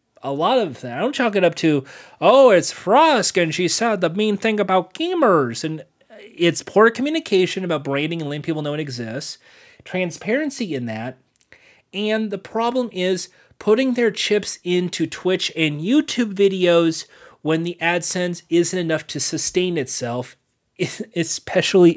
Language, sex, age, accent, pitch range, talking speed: English, male, 30-49, American, 145-210 Hz, 155 wpm